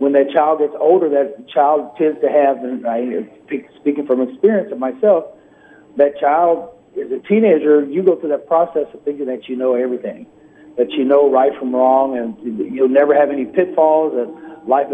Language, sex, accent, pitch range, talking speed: English, male, American, 135-170 Hz, 190 wpm